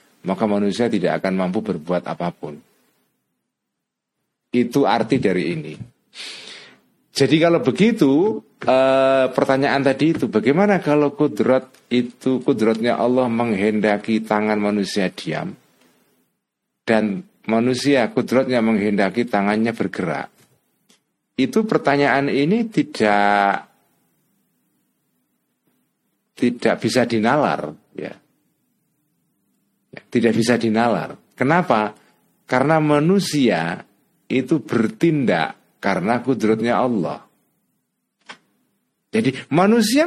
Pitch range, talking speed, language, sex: 110-145 Hz, 80 wpm, Indonesian, male